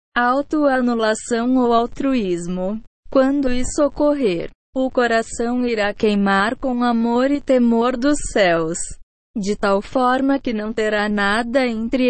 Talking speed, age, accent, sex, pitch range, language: 120 wpm, 20-39, Brazilian, female, 215-260 Hz, Portuguese